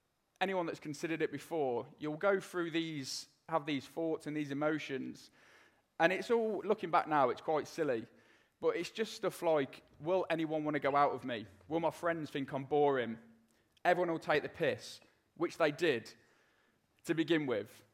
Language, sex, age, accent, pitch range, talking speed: English, male, 20-39, British, 140-170 Hz, 180 wpm